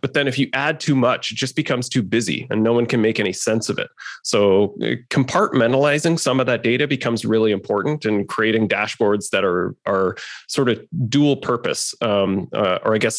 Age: 30-49